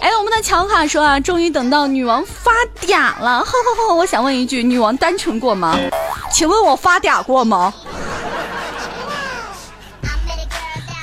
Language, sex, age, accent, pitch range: Chinese, female, 20-39, native, 295-410 Hz